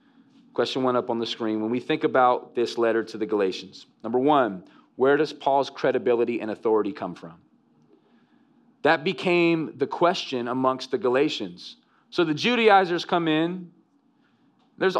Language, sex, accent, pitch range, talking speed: English, male, American, 160-235 Hz, 150 wpm